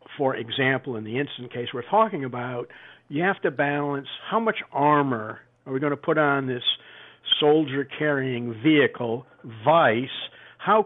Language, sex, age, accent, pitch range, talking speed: English, male, 50-69, American, 130-165 Hz, 155 wpm